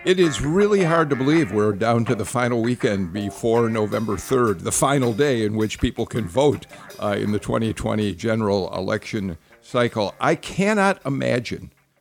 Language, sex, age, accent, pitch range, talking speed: English, male, 50-69, American, 105-135 Hz, 165 wpm